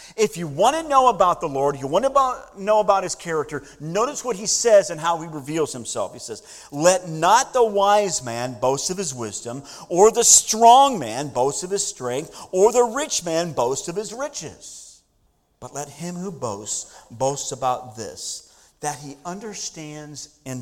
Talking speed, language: 185 wpm, English